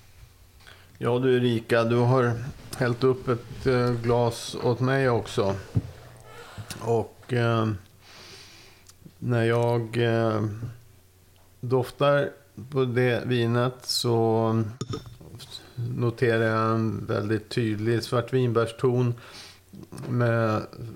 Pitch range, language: 100-125 Hz, Swedish